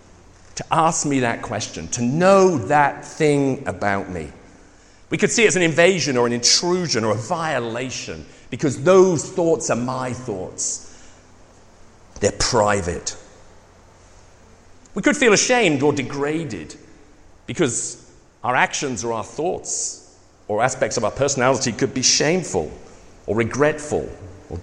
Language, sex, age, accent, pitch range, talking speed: English, male, 50-69, British, 95-150 Hz, 135 wpm